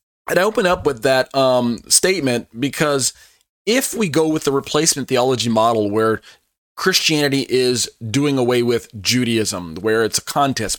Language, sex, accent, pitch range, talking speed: English, male, American, 115-140 Hz, 155 wpm